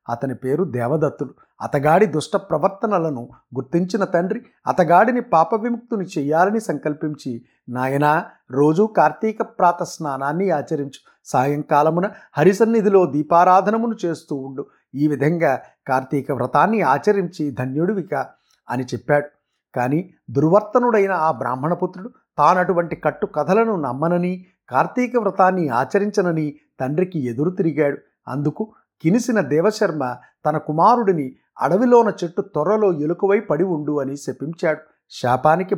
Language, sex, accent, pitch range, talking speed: Telugu, male, native, 145-195 Hz, 95 wpm